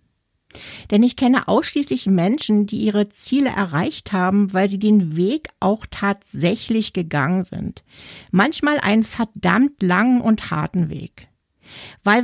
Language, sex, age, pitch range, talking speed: German, female, 50-69, 190-250 Hz, 125 wpm